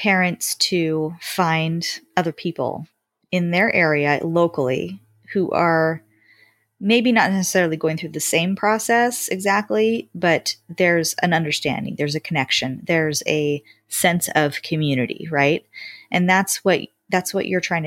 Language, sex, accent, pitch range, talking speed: English, female, American, 145-185 Hz, 135 wpm